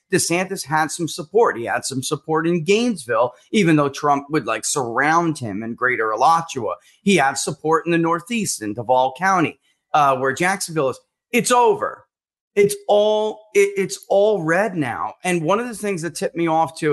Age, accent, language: 30-49, American, English